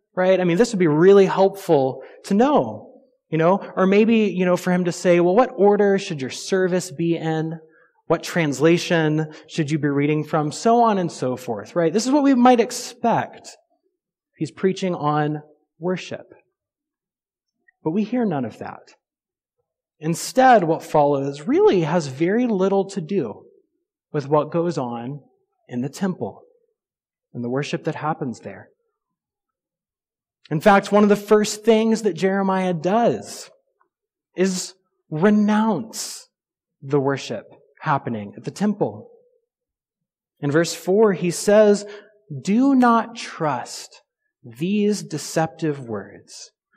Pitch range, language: 160-230 Hz, English